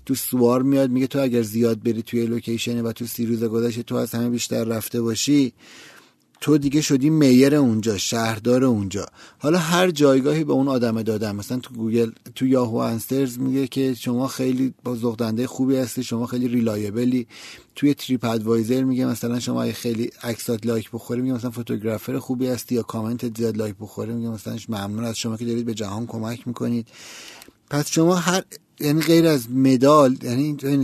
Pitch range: 115-135 Hz